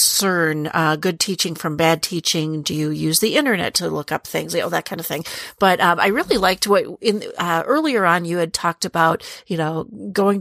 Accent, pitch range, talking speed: American, 170-215 Hz, 225 wpm